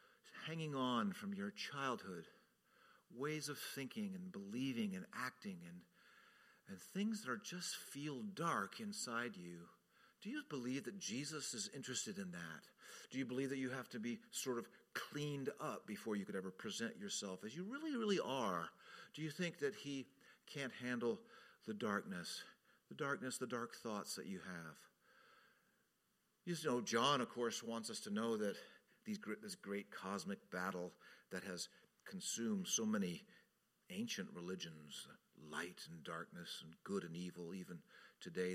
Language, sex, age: English, male, 50-69